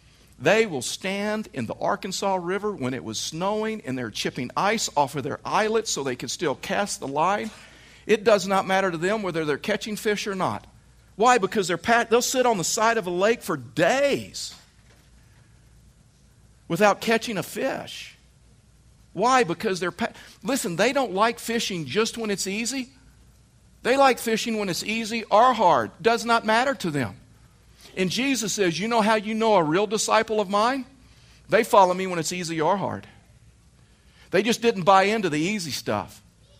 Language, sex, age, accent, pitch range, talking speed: English, male, 50-69, American, 150-220 Hz, 180 wpm